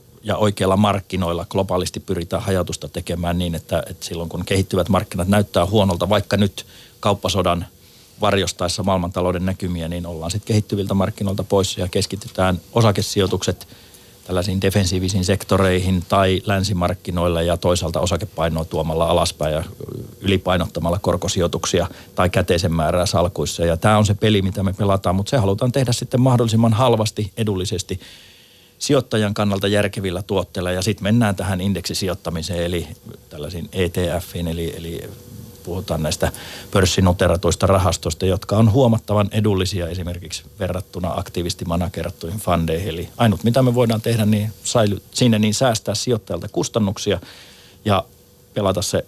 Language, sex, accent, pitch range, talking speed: Finnish, male, native, 90-105 Hz, 130 wpm